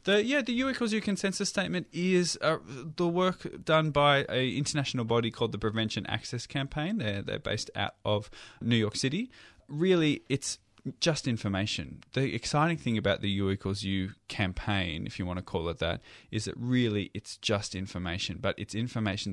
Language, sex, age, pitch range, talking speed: English, male, 20-39, 95-125 Hz, 185 wpm